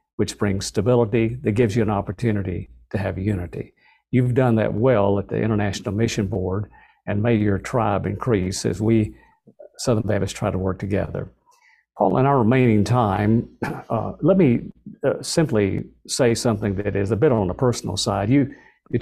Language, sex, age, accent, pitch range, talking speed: English, male, 50-69, American, 100-120 Hz, 175 wpm